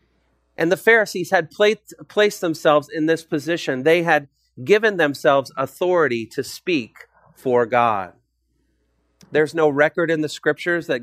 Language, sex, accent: English, male, American